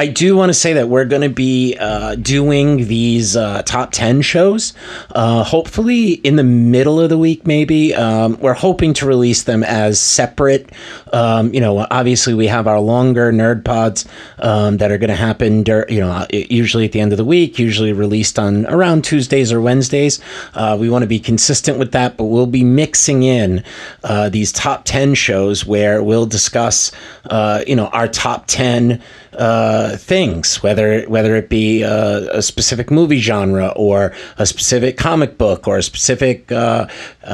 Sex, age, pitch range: male, 30-49, 110-135 Hz